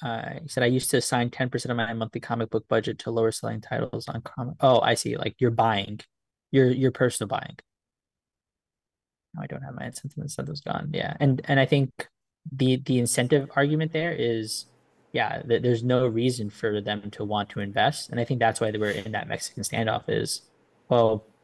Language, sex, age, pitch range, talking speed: English, male, 10-29, 110-130 Hz, 210 wpm